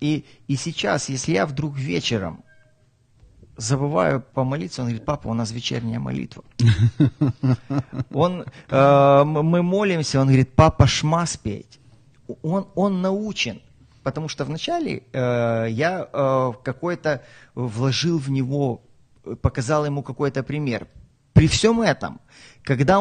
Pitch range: 130-165 Hz